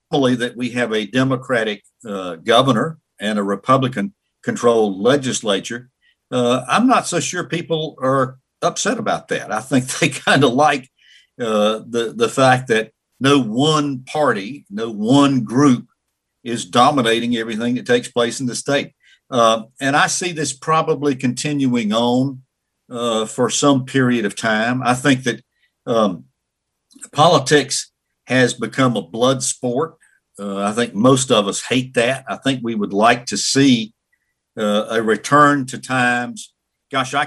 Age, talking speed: 50-69, 150 wpm